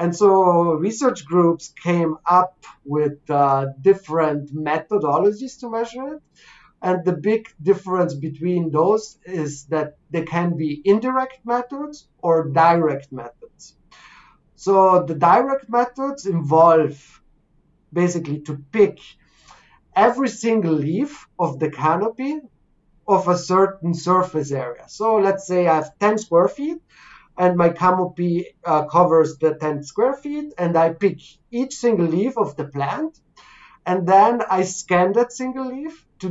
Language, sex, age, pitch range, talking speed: English, male, 50-69, 155-205 Hz, 135 wpm